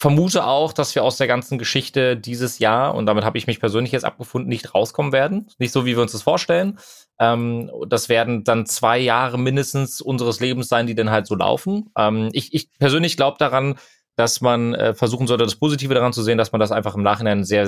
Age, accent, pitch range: 30-49, German, 115-140 Hz